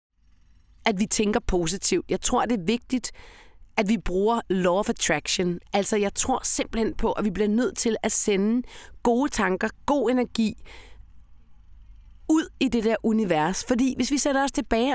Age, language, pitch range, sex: 30-49, Danish, 180-245 Hz, female